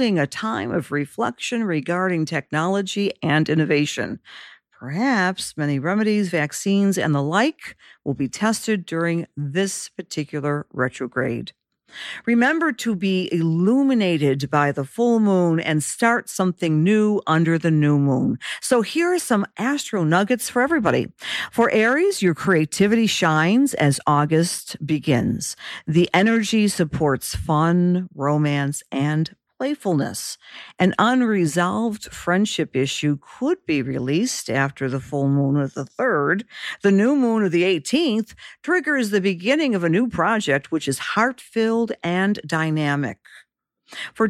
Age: 50-69